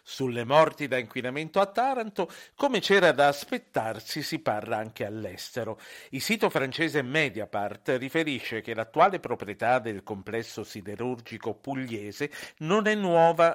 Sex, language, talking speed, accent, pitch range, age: male, Italian, 130 wpm, native, 115-155 Hz, 50-69